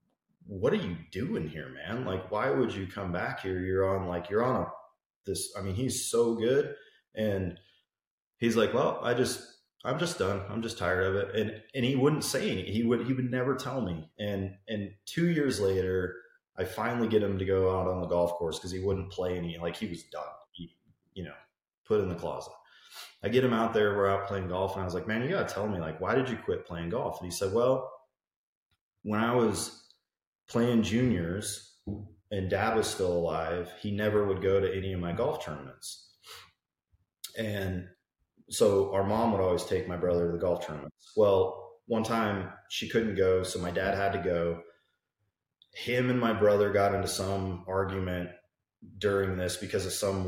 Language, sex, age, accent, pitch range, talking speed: English, male, 30-49, American, 90-110 Hz, 205 wpm